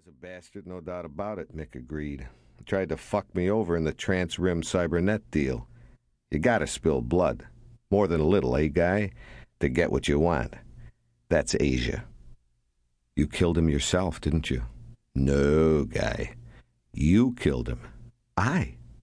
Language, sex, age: English, male, 60-79